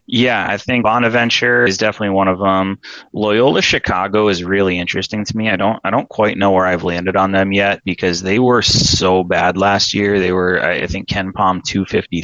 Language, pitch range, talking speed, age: English, 85-95 Hz, 210 wpm, 20-39